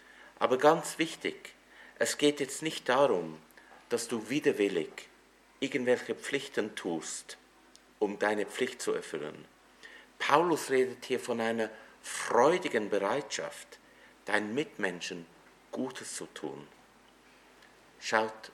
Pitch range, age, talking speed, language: 95-145 Hz, 50-69, 105 wpm, English